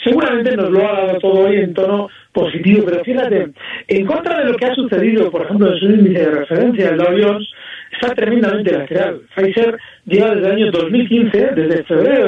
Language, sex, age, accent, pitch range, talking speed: Spanish, male, 40-59, Spanish, 185-245 Hz, 190 wpm